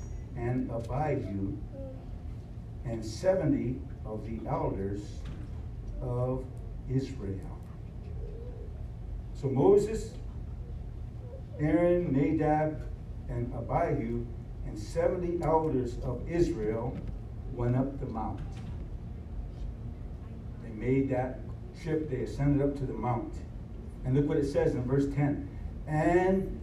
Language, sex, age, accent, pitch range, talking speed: English, male, 60-79, American, 115-150 Hz, 95 wpm